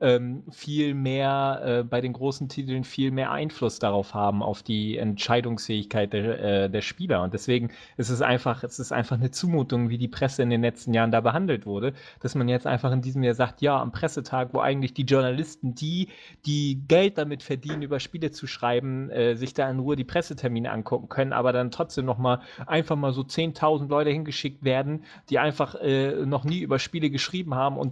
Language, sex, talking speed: English, male, 195 wpm